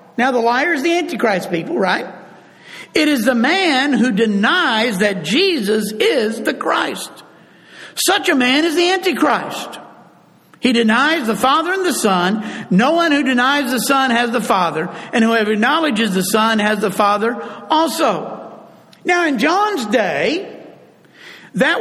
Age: 50-69